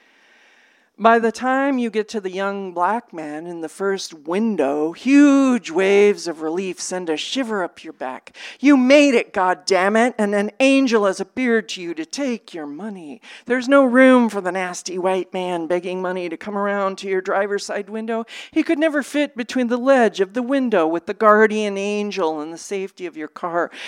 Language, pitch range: English, 195-260 Hz